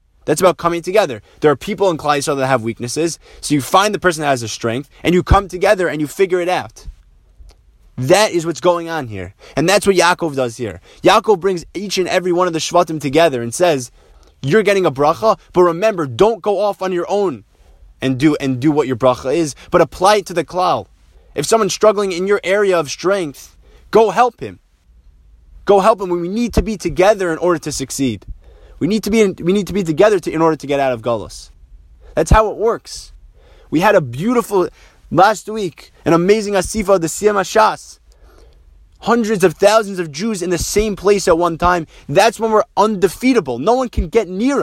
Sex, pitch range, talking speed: male, 135-205 Hz, 215 wpm